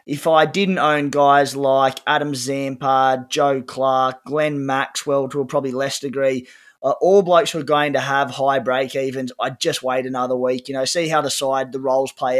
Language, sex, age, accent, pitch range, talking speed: English, male, 20-39, Australian, 130-150 Hz, 200 wpm